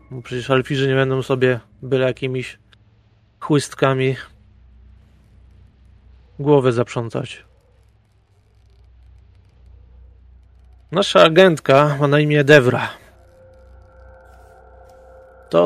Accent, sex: native, male